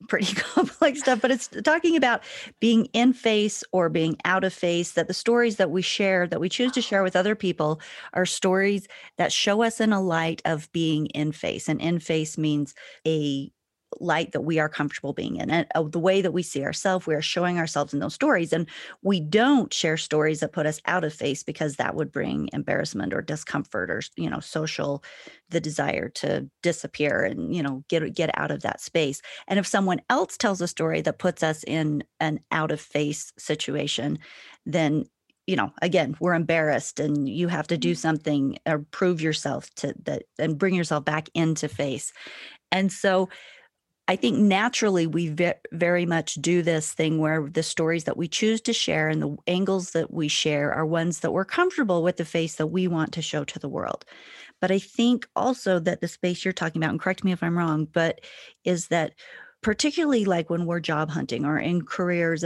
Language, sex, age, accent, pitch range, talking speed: English, female, 40-59, American, 155-195 Hz, 200 wpm